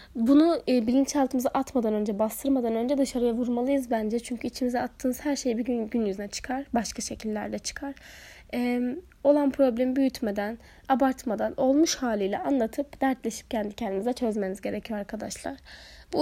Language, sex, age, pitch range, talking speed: Turkish, female, 10-29, 230-270 Hz, 140 wpm